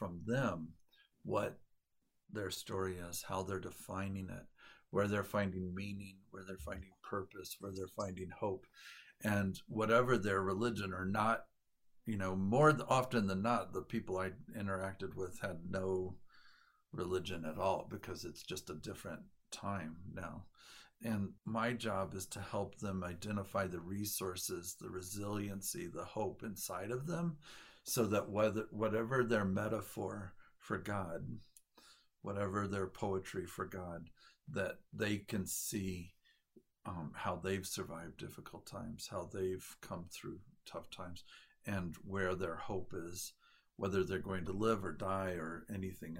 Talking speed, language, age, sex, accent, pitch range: 145 wpm, English, 50-69, male, American, 90-105 Hz